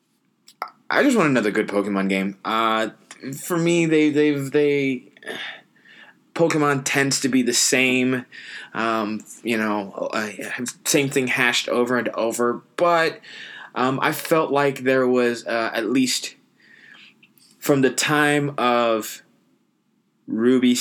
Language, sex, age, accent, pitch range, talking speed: English, male, 20-39, American, 100-125 Hz, 130 wpm